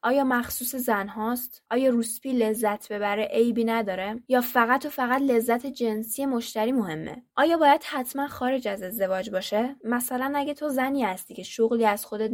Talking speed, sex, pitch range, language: 165 wpm, female, 210-260 Hz, Persian